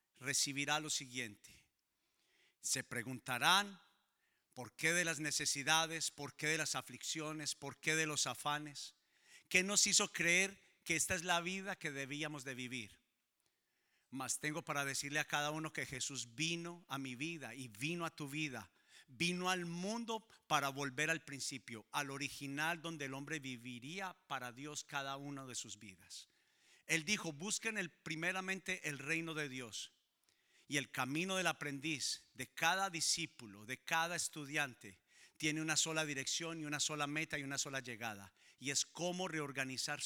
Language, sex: Spanish, male